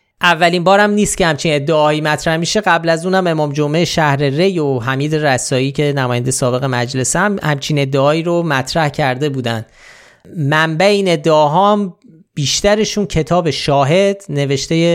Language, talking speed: Persian, 150 wpm